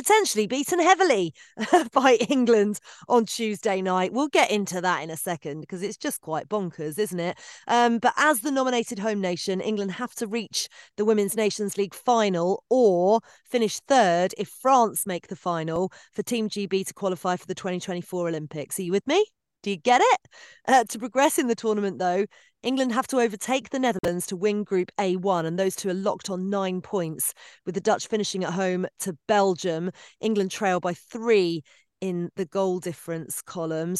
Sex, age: female, 30-49